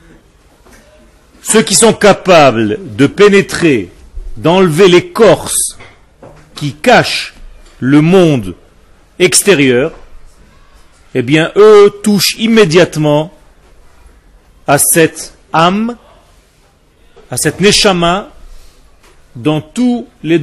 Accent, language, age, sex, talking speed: French, French, 40-59, male, 80 wpm